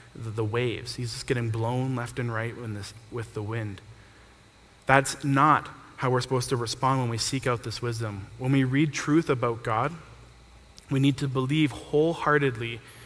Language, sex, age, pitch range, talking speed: English, male, 20-39, 110-135 Hz, 165 wpm